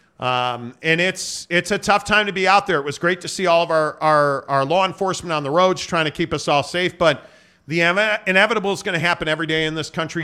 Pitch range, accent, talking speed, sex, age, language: 140-180 Hz, American, 260 wpm, male, 40-59, English